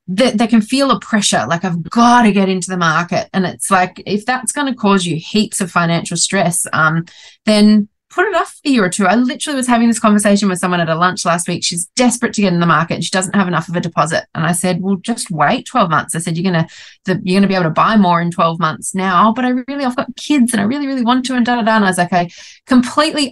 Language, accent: English, Australian